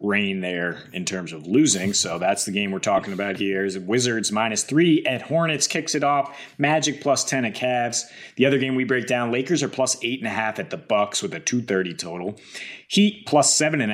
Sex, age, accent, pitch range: male, 30-49, American, 105-135 Hz